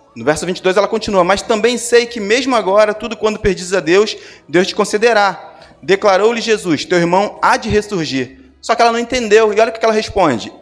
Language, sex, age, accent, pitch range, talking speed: Portuguese, male, 20-39, Brazilian, 190-230 Hz, 210 wpm